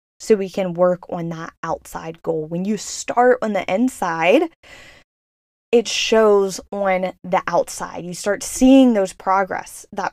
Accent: American